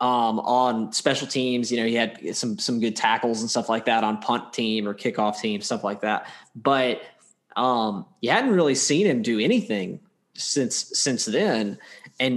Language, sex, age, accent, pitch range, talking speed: English, male, 20-39, American, 120-145 Hz, 185 wpm